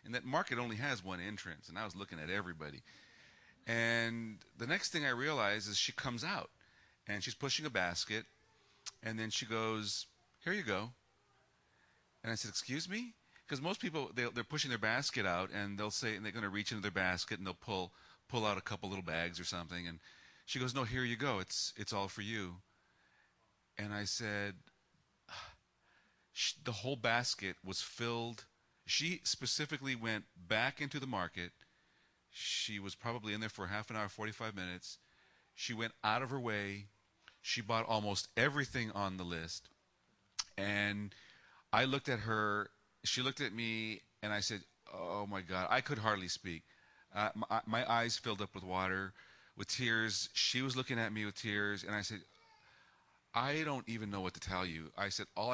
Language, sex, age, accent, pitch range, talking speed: English, male, 40-59, American, 100-120 Hz, 185 wpm